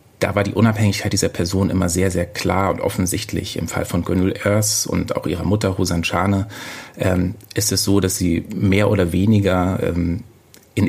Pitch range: 90-105 Hz